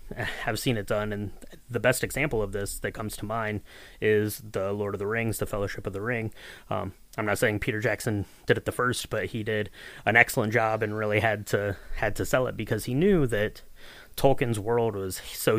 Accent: American